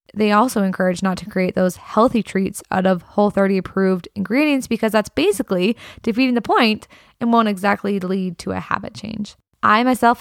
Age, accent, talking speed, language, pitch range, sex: 20-39, American, 175 wpm, English, 200-245 Hz, female